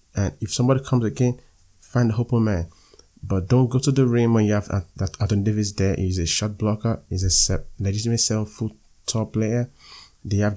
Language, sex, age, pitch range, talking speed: English, male, 20-39, 90-110 Hz, 205 wpm